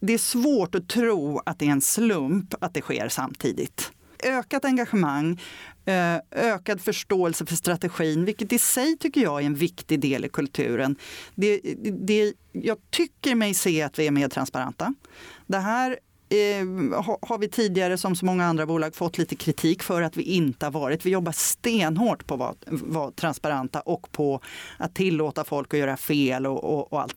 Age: 30-49